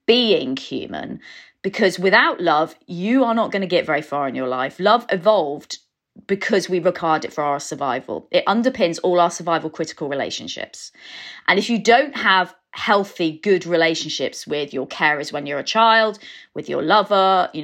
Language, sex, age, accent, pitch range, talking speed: English, female, 30-49, British, 160-205 Hz, 175 wpm